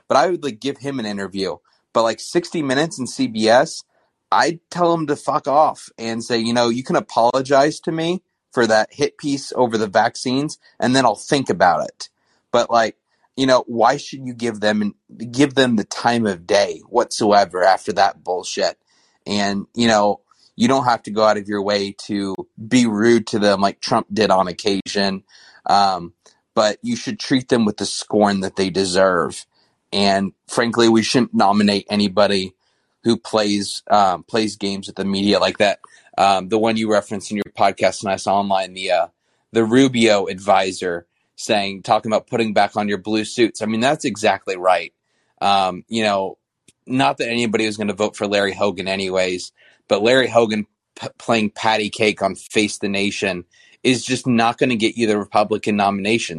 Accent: American